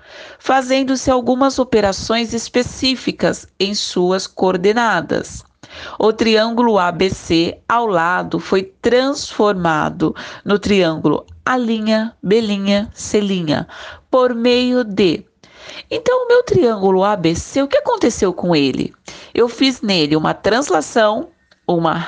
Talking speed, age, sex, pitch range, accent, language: 105 wpm, 40-59, female, 190-245 Hz, Brazilian, Portuguese